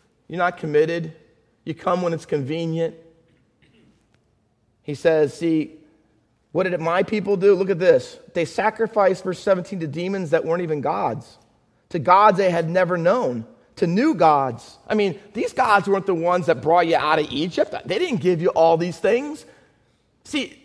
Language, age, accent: English, 40-59, American